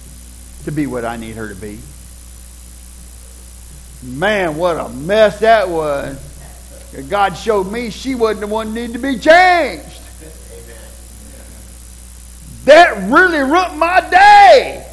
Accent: American